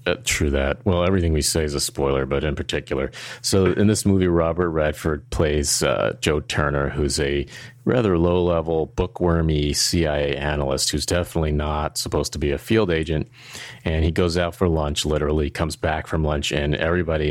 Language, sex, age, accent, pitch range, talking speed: English, male, 30-49, American, 75-90 Hz, 180 wpm